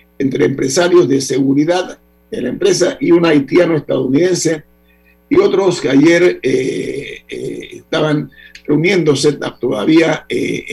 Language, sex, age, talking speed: Spanish, male, 50-69, 115 wpm